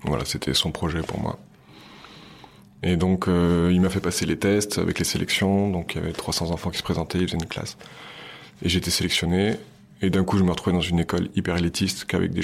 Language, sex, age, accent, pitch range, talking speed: French, male, 20-39, French, 85-95 Hz, 225 wpm